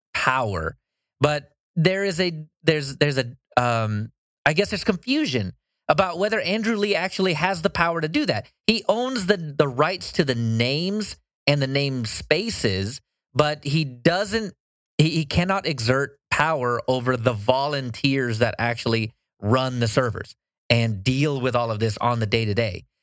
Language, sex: English, male